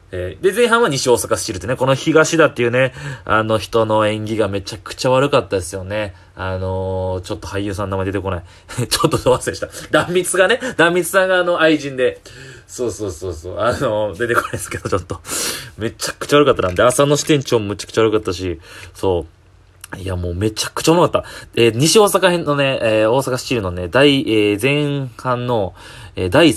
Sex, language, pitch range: male, Japanese, 95-145 Hz